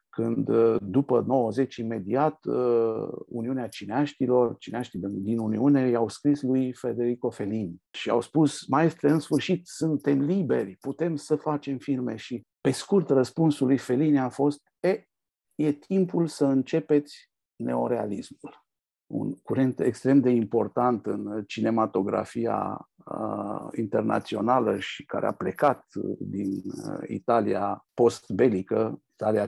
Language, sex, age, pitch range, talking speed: Romanian, male, 50-69, 110-145 Hz, 120 wpm